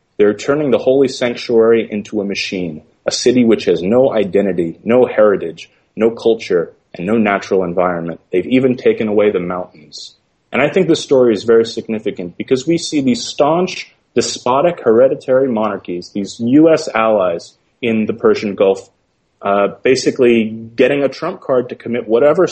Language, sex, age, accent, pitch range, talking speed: English, male, 30-49, American, 95-125 Hz, 160 wpm